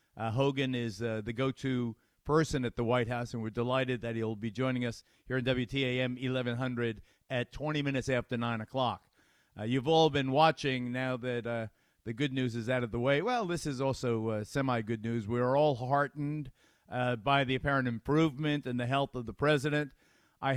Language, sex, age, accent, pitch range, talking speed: English, male, 50-69, American, 125-150 Hz, 195 wpm